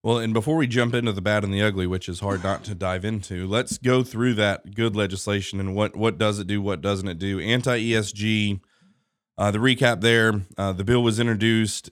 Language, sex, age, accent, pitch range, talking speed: English, male, 30-49, American, 100-110 Hz, 215 wpm